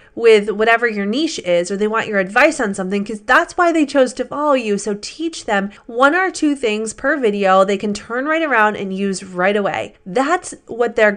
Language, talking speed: English, 220 wpm